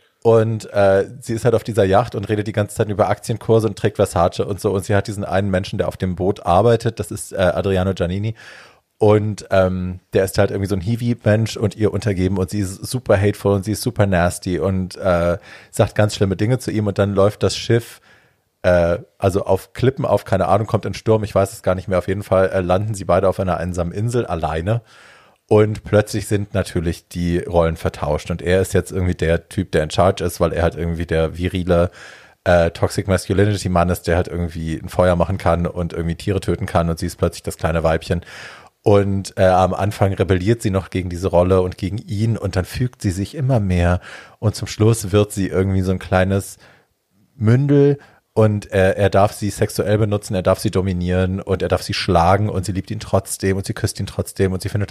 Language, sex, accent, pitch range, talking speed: German, male, German, 95-110 Hz, 225 wpm